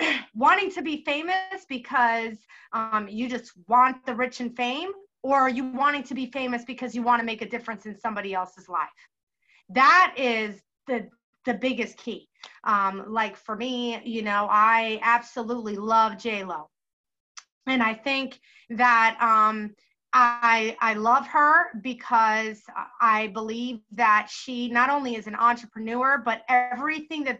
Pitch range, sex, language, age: 225-300 Hz, female, English, 30-49